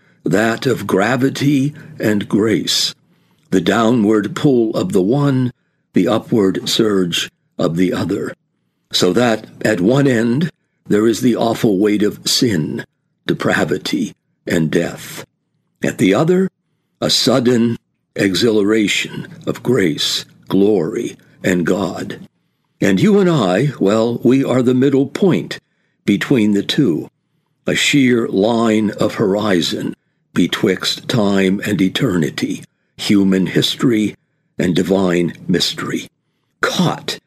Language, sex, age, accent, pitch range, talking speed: English, male, 60-79, American, 95-120 Hz, 115 wpm